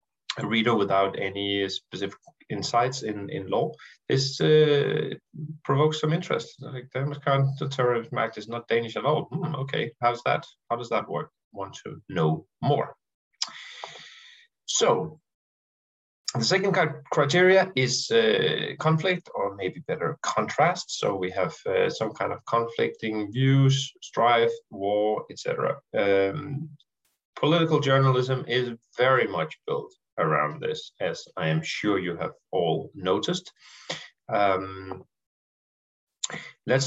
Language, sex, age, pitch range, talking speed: Danish, male, 30-49, 105-155 Hz, 125 wpm